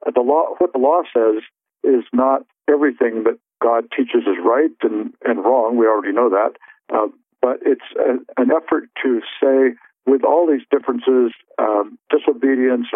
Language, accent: English, American